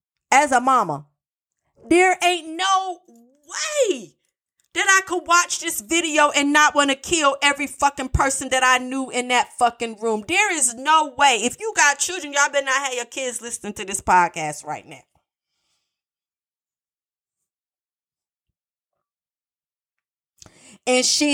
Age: 40-59